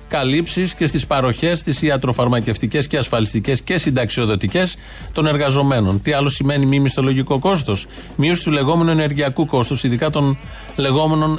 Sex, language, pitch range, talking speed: male, Greek, 120-155 Hz, 135 wpm